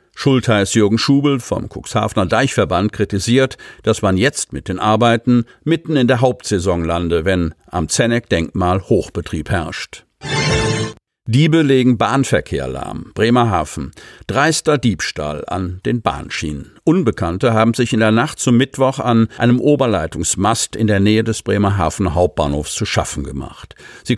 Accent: German